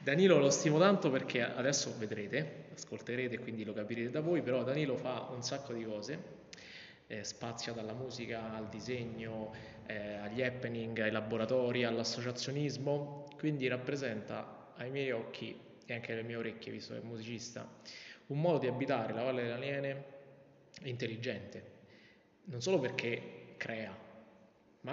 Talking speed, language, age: 145 wpm, Italian, 20-39